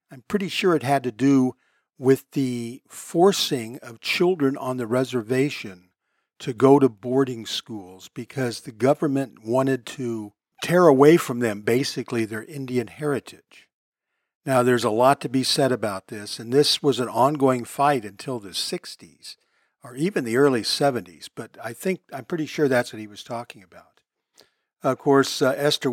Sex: male